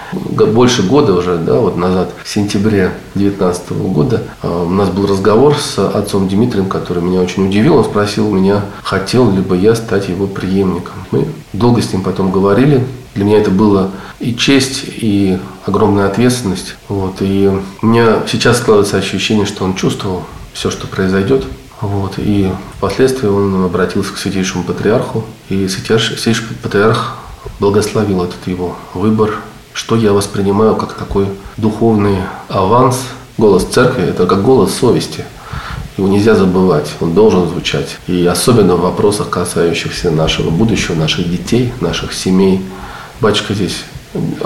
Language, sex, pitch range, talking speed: Russian, male, 95-110 Hz, 140 wpm